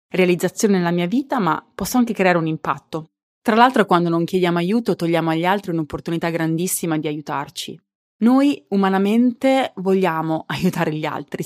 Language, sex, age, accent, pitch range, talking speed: Italian, female, 20-39, native, 165-205 Hz, 150 wpm